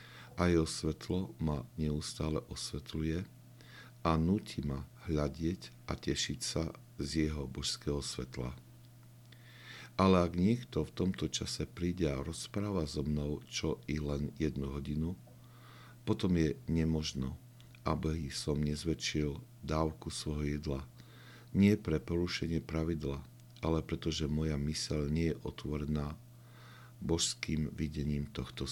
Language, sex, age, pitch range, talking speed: Slovak, male, 50-69, 75-115 Hz, 115 wpm